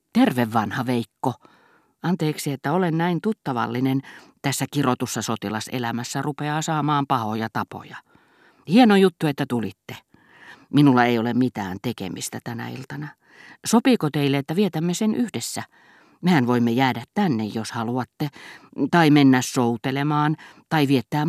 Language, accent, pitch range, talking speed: Finnish, native, 120-155 Hz, 120 wpm